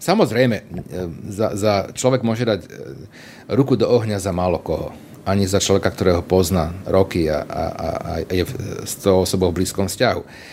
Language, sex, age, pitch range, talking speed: Slovak, male, 40-59, 100-125 Hz, 165 wpm